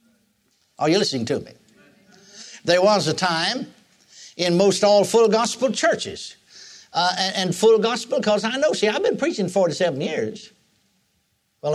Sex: male